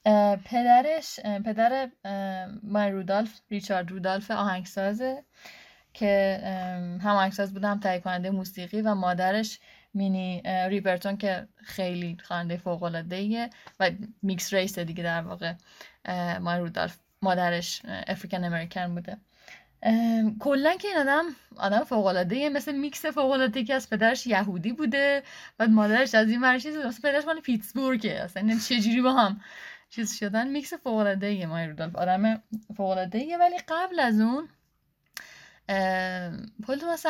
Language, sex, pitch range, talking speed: English, female, 185-230 Hz, 125 wpm